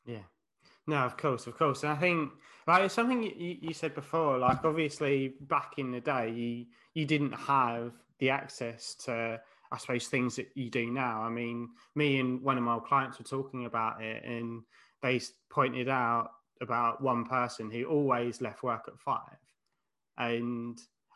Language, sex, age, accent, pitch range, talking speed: English, male, 20-39, British, 120-150 Hz, 175 wpm